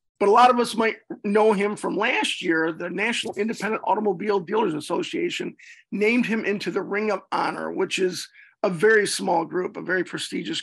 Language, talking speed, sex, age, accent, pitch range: English, 185 wpm, male, 40-59, American, 180-220 Hz